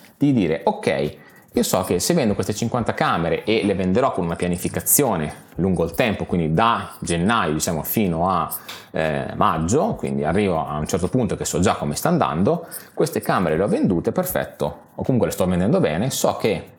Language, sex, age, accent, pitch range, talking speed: Italian, male, 30-49, native, 90-105 Hz, 195 wpm